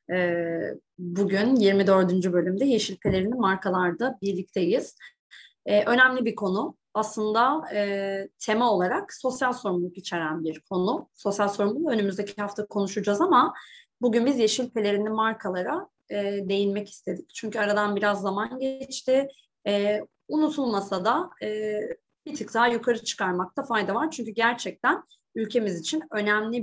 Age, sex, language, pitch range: 30-49, female, Turkish, 195-255 Hz